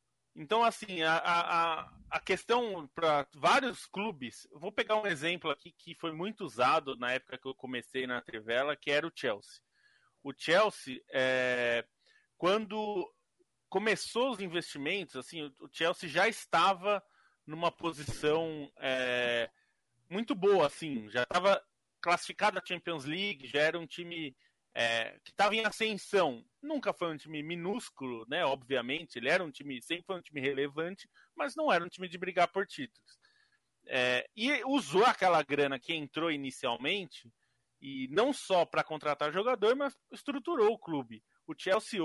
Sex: male